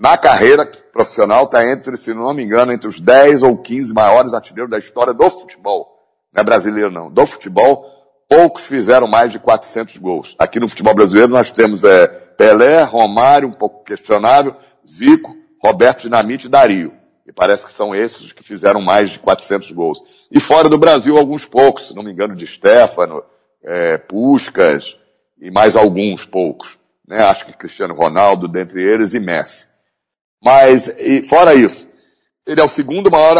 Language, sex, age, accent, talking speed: Portuguese, male, 60-79, Brazilian, 170 wpm